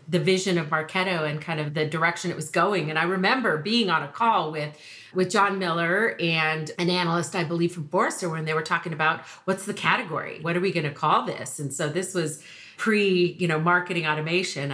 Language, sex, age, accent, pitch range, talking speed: English, female, 40-59, American, 160-210 Hz, 215 wpm